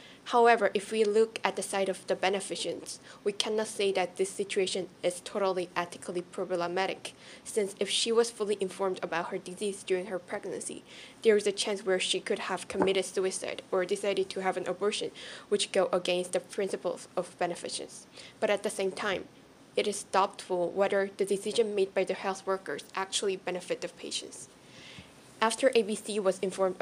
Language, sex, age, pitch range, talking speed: English, female, 10-29, 185-210 Hz, 175 wpm